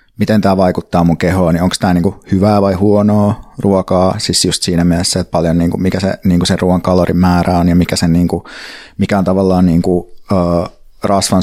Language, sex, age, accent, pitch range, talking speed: Finnish, male, 20-39, native, 95-105 Hz, 195 wpm